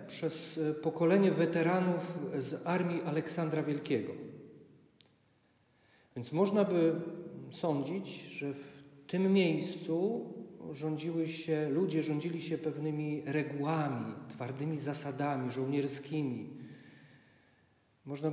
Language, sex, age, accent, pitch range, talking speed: Polish, male, 40-59, native, 130-165 Hz, 85 wpm